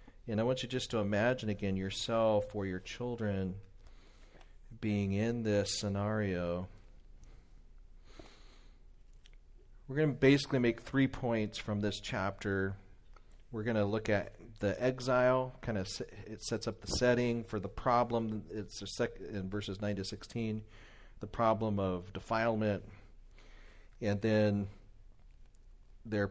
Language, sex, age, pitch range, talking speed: English, male, 40-59, 95-115 Hz, 130 wpm